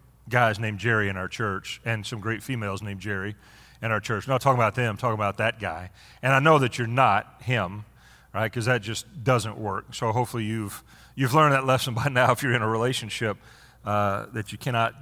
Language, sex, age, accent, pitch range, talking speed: English, male, 40-59, American, 110-140 Hz, 225 wpm